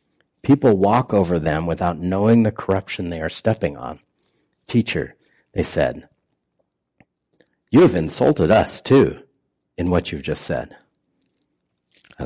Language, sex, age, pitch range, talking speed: English, male, 50-69, 85-110 Hz, 125 wpm